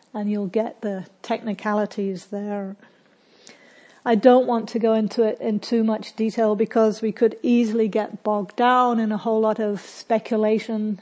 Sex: female